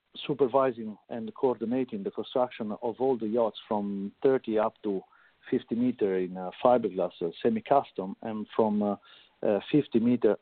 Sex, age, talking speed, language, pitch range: male, 50-69, 130 wpm, English, 110-125 Hz